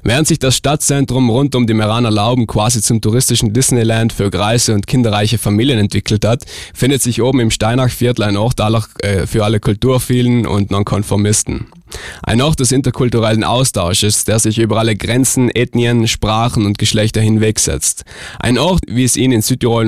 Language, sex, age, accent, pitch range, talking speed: German, male, 20-39, German, 105-125 Hz, 165 wpm